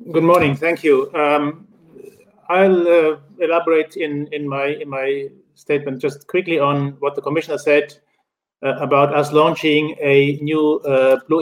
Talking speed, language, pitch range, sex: 150 wpm, English, 140-165 Hz, male